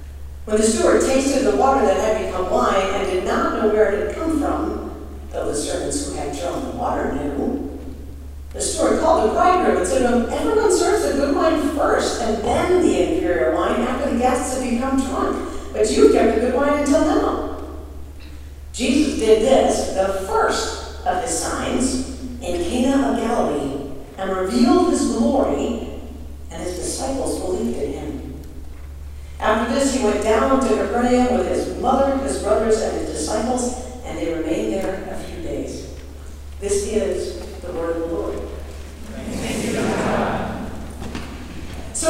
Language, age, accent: English, 50-69, American